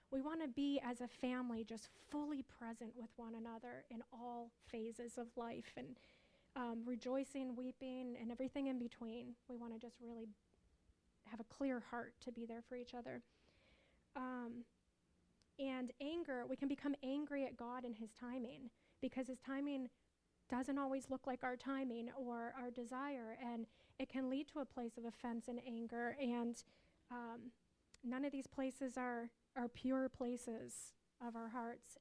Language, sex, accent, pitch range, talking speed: English, female, American, 235-265 Hz, 165 wpm